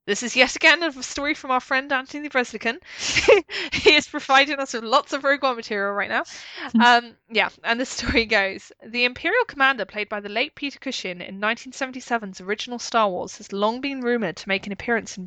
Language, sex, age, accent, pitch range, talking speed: English, female, 20-39, British, 195-245 Hz, 205 wpm